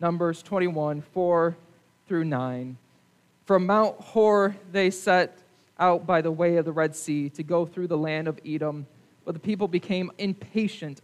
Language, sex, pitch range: English, male, 155-200 Hz